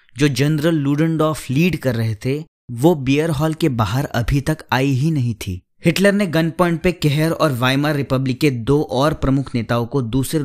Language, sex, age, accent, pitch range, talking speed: Hindi, male, 20-39, native, 115-155 Hz, 195 wpm